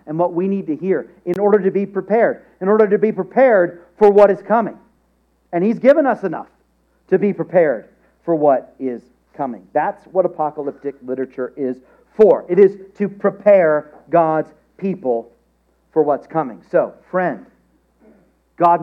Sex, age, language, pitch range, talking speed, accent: male, 40-59, English, 130-200 Hz, 160 wpm, American